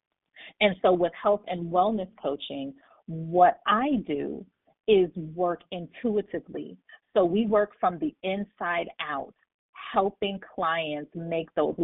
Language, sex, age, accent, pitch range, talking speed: English, female, 40-59, American, 160-195 Hz, 120 wpm